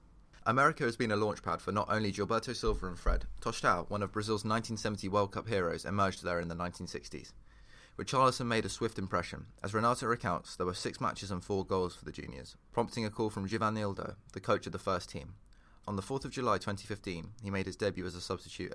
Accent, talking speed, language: British, 215 wpm, English